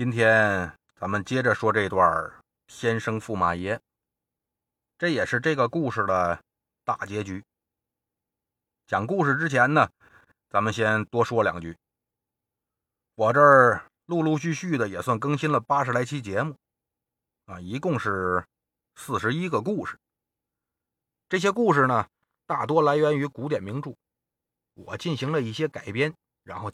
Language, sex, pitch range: Chinese, male, 100-145 Hz